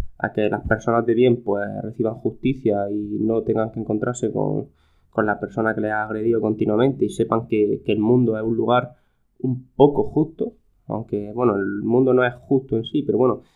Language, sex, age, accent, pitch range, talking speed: Spanish, male, 20-39, Spanish, 110-135 Hz, 205 wpm